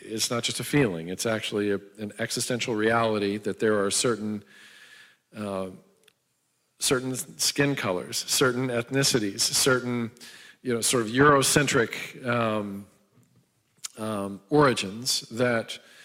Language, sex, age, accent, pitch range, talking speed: English, male, 50-69, American, 110-135 Hz, 115 wpm